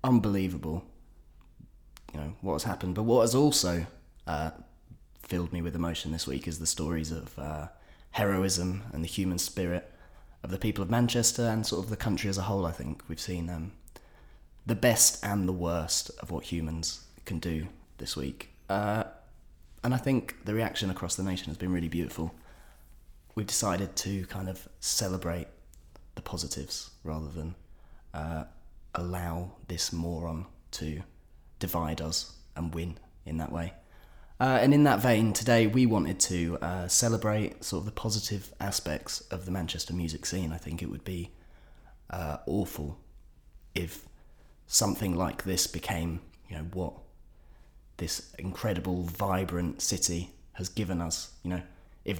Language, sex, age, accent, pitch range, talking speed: English, male, 20-39, British, 80-95 Hz, 160 wpm